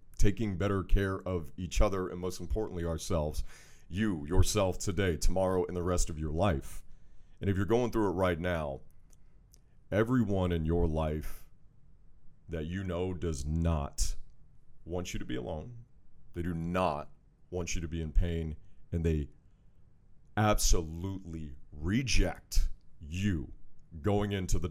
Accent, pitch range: American, 85-100 Hz